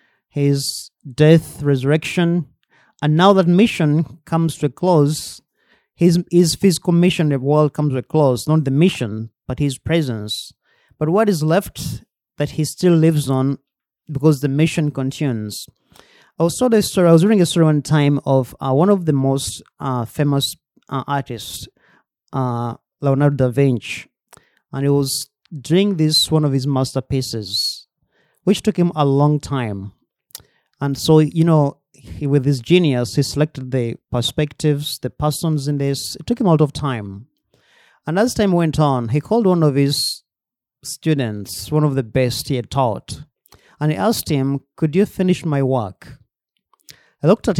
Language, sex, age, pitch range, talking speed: English, male, 30-49, 130-160 Hz, 170 wpm